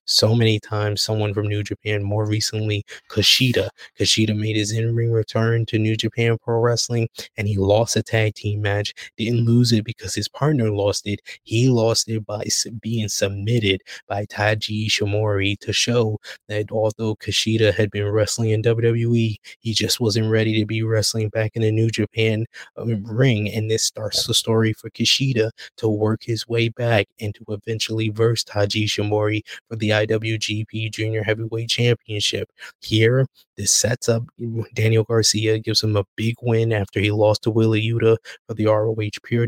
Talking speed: 170 wpm